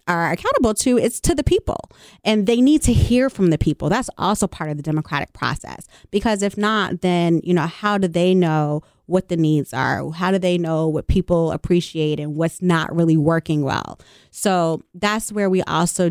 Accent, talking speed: American, 200 wpm